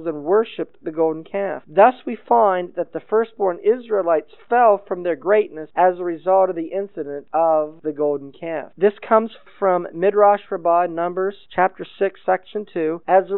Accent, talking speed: American, 170 wpm